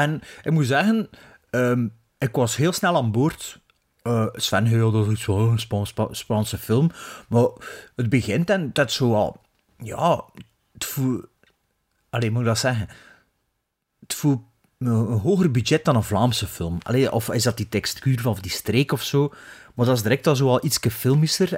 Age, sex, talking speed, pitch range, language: 30-49, male, 180 wpm, 100-135 Hz, Dutch